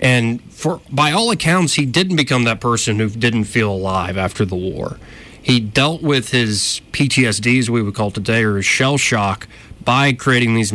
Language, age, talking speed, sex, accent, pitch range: English, 30-49, 190 wpm, male, American, 105-130 Hz